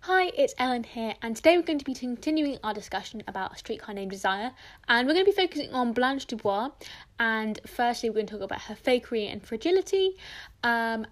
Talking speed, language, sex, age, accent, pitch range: 210 wpm, English, female, 10-29, British, 210-270 Hz